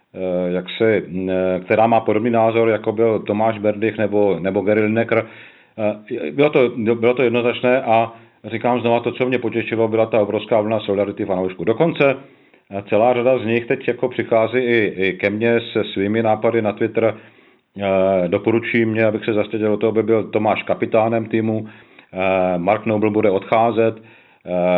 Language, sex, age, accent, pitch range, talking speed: Czech, male, 40-59, native, 100-115 Hz, 160 wpm